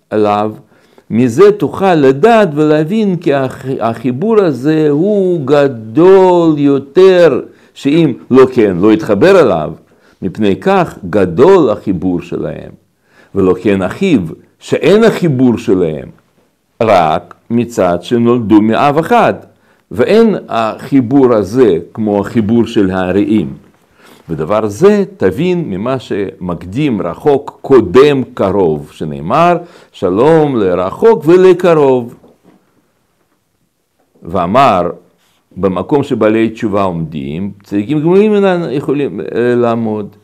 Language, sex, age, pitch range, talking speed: Hebrew, male, 60-79, 105-175 Hz, 90 wpm